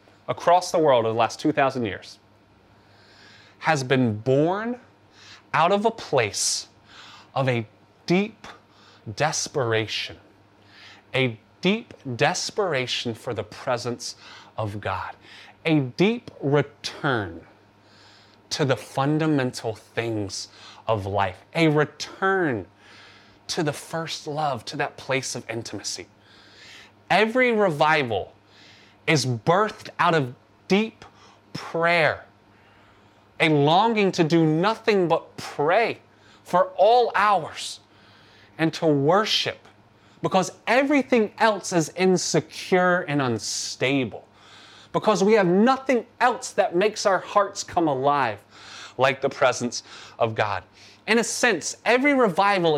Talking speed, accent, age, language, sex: 110 wpm, American, 30-49, English, male